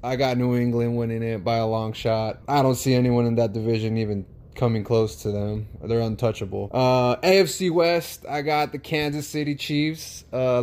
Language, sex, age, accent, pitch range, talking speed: English, male, 20-39, American, 115-150 Hz, 190 wpm